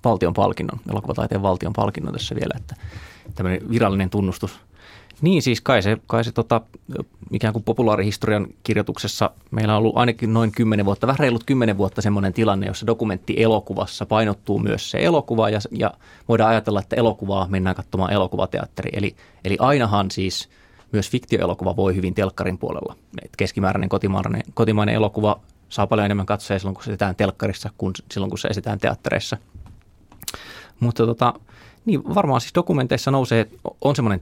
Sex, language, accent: male, Finnish, native